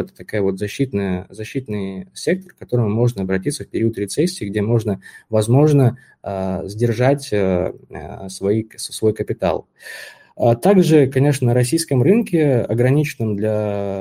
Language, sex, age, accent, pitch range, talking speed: Russian, male, 20-39, native, 95-120 Hz, 105 wpm